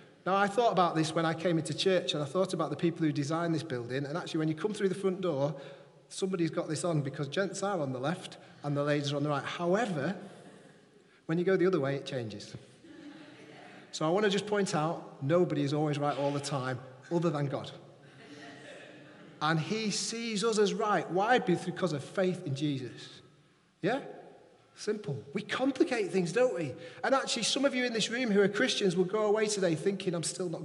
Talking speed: 215 wpm